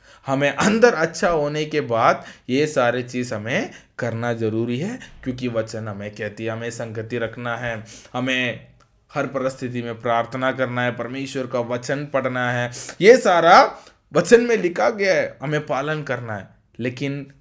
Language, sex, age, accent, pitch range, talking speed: Hindi, male, 20-39, native, 120-150 Hz, 160 wpm